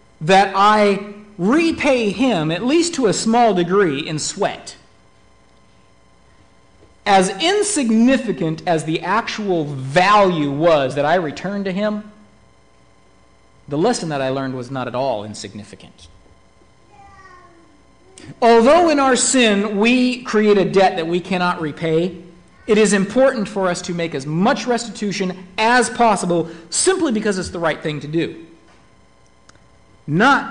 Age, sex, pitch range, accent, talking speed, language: 50-69, male, 135-215 Hz, American, 130 wpm, English